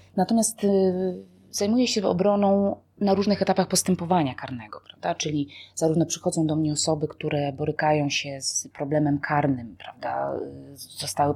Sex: female